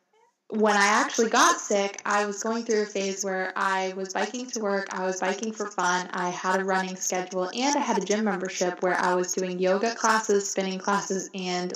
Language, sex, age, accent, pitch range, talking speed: English, female, 20-39, American, 190-215 Hz, 215 wpm